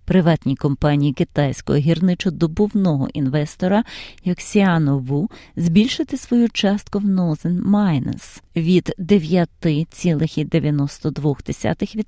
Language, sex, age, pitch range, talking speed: Ukrainian, female, 30-49, 155-220 Hz, 70 wpm